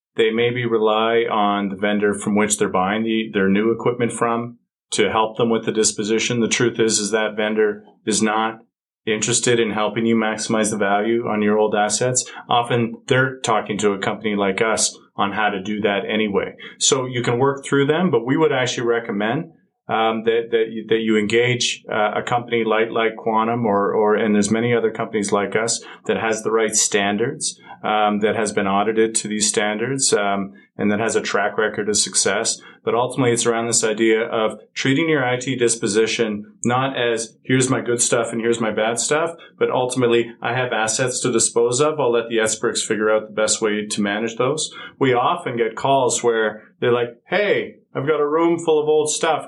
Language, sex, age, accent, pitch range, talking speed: English, male, 30-49, American, 110-125 Hz, 205 wpm